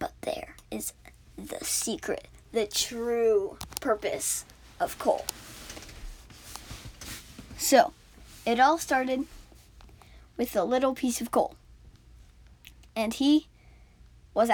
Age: 10-29